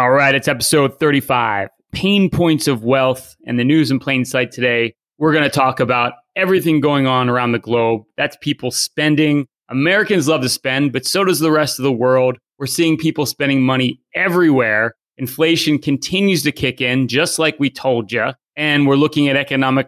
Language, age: English, 30-49